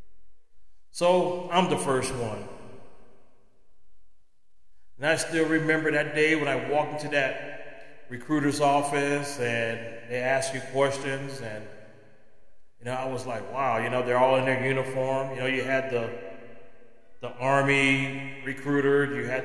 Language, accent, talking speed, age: English, American, 145 wpm, 30-49